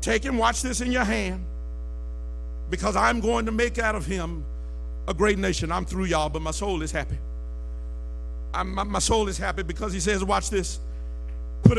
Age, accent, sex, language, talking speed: 50-69, American, male, English, 185 wpm